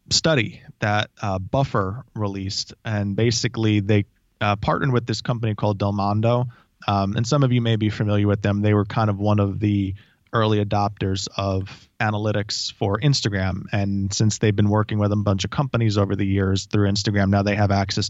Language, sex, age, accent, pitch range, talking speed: English, male, 20-39, American, 100-115 Hz, 190 wpm